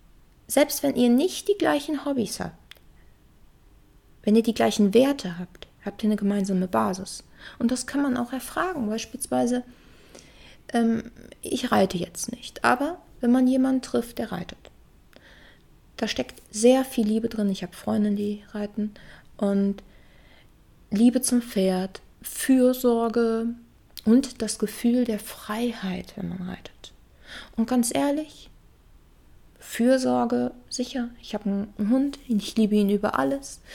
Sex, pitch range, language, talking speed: female, 200-250 Hz, German, 135 wpm